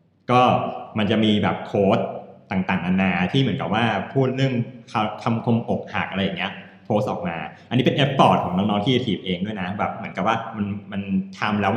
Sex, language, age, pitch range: male, Thai, 20-39, 95-125 Hz